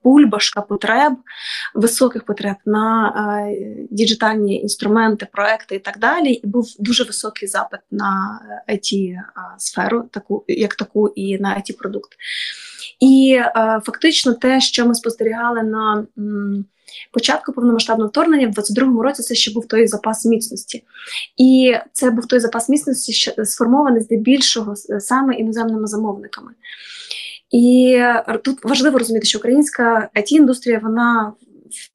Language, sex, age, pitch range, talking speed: Ukrainian, female, 20-39, 210-250 Hz, 125 wpm